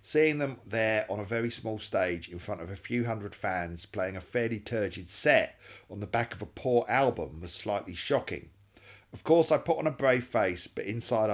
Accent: British